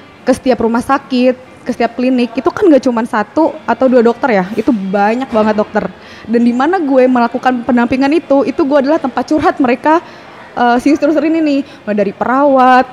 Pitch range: 225-280 Hz